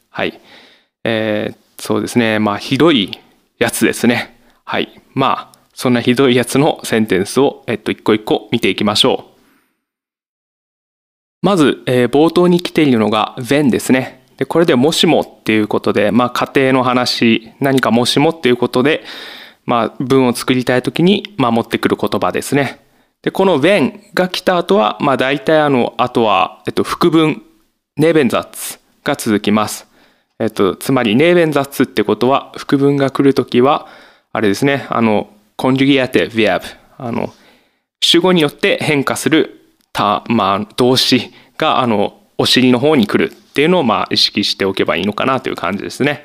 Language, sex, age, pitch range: Japanese, male, 20-39, 120-140 Hz